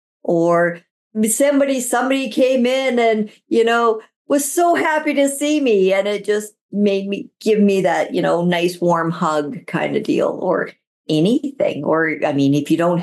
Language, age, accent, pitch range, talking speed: English, 50-69, American, 155-220 Hz, 175 wpm